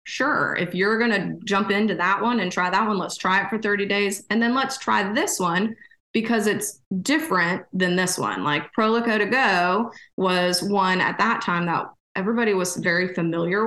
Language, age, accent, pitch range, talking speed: English, 20-39, American, 175-205 Hz, 200 wpm